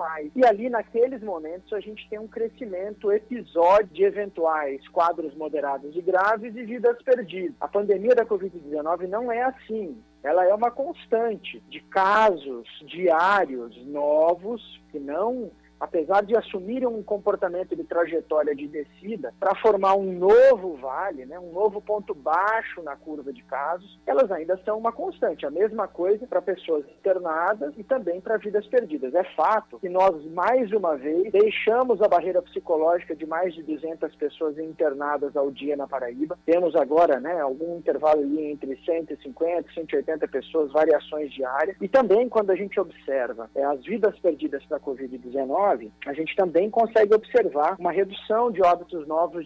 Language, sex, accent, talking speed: Portuguese, male, Brazilian, 160 wpm